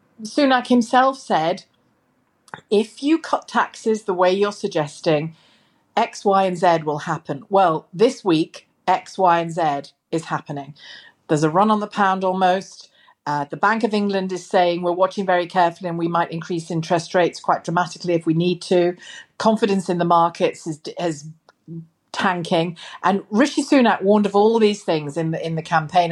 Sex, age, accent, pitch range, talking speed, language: female, 40-59, British, 170-215 Hz, 170 wpm, English